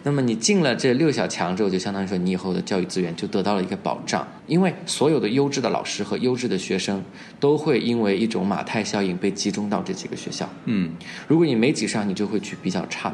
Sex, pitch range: male, 95-115 Hz